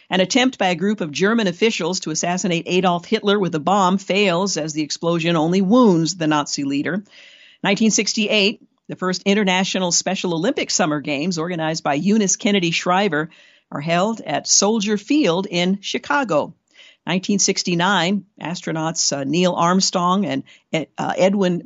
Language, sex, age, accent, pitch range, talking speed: English, female, 50-69, American, 170-210 Hz, 145 wpm